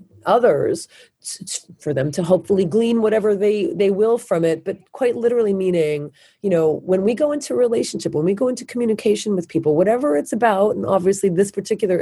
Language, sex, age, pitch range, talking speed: English, female, 30-49, 155-220 Hz, 185 wpm